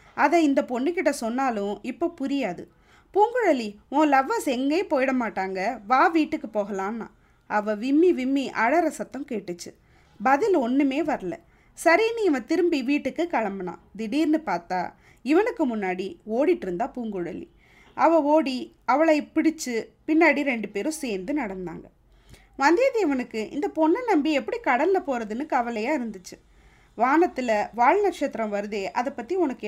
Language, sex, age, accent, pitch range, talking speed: Tamil, female, 20-39, native, 215-300 Hz, 120 wpm